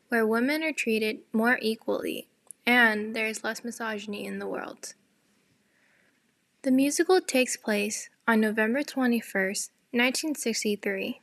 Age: 10-29